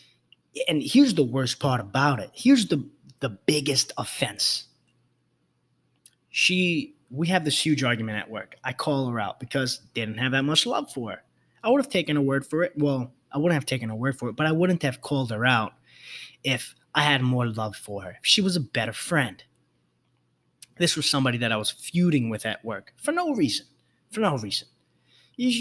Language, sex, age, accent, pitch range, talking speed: English, male, 20-39, American, 115-150 Hz, 200 wpm